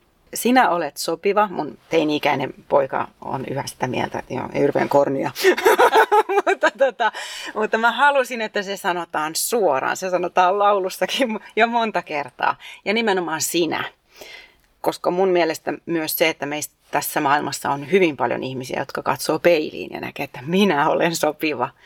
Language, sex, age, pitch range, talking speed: Finnish, female, 30-49, 150-215 Hz, 145 wpm